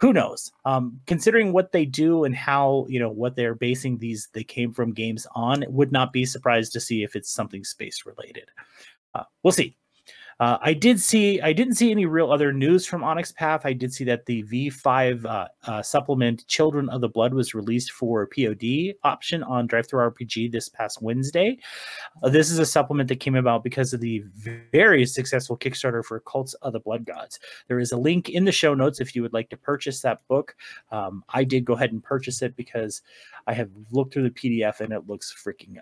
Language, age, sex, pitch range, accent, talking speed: English, 30-49, male, 120-155 Hz, American, 210 wpm